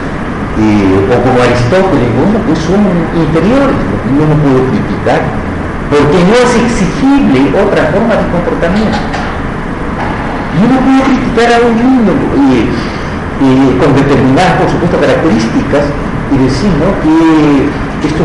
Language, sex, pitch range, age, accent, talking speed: Spanish, male, 120-190 Hz, 50-69, Mexican, 130 wpm